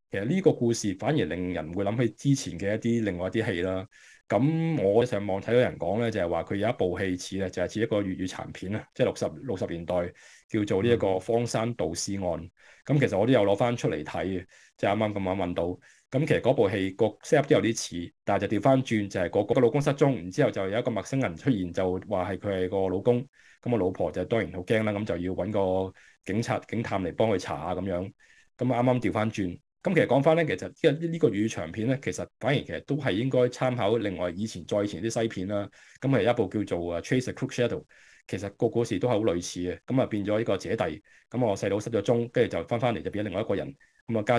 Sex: male